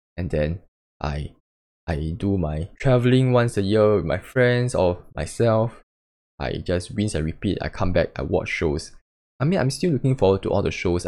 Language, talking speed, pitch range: English, 195 wpm, 80-110 Hz